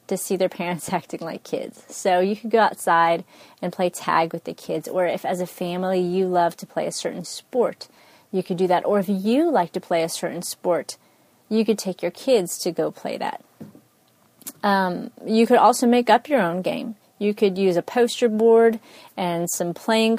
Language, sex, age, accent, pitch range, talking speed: English, female, 30-49, American, 175-225 Hz, 210 wpm